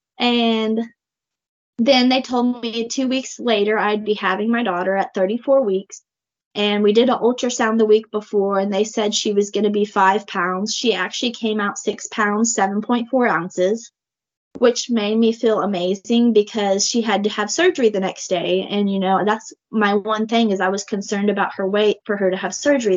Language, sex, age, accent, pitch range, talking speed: English, female, 20-39, American, 190-220 Hz, 195 wpm